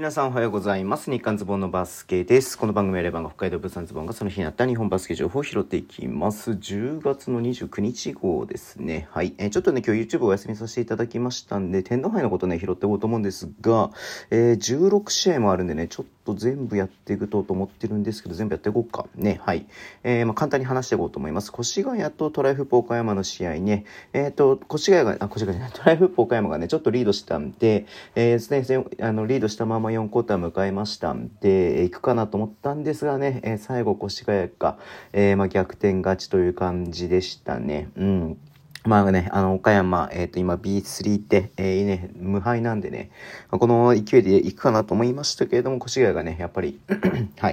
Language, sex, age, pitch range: Japanese, male, 40-59, 95-125 Hz